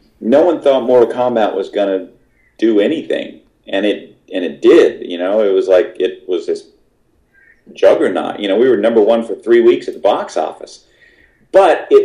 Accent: American